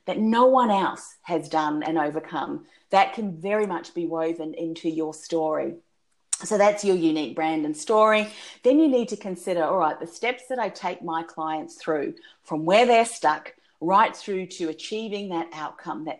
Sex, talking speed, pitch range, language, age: female, 185 wpm, 165-215 Hz, English, 30-49